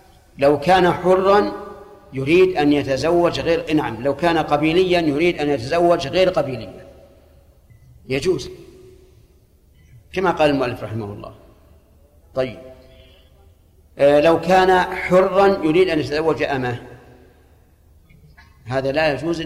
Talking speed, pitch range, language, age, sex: 105 wpm, 110-165 Hz, Arabic, 50-69, male